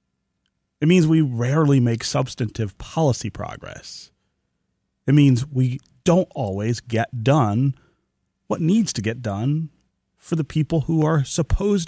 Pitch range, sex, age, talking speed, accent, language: 110-155 Hz, male, 30-49, 130 wpm, American, English